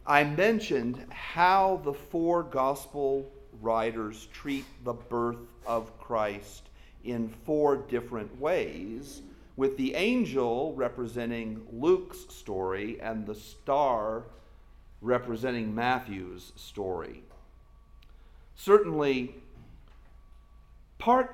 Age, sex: 50-69, male